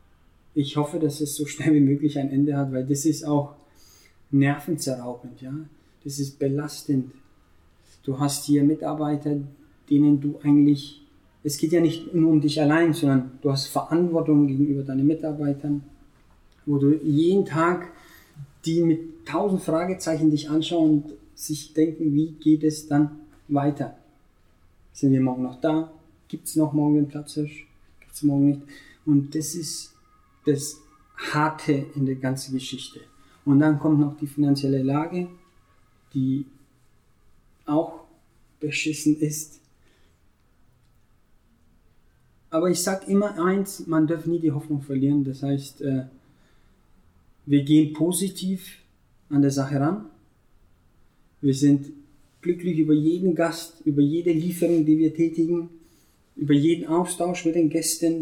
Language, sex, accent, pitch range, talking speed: German, male, German, 135-155 Hz, 135 wpm